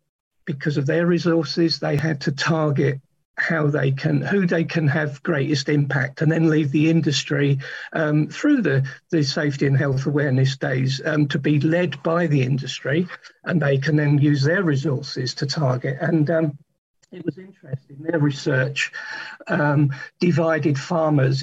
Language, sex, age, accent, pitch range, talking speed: English, male, 50-69, British, 145-170 Hz, 160 wpm